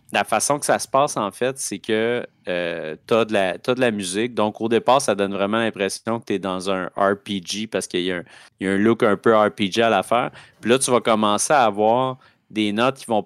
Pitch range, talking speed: 100-120 Hz, 255 wpm